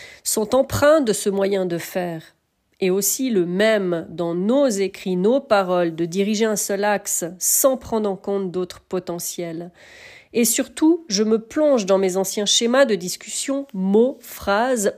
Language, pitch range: French, 195-260 Hz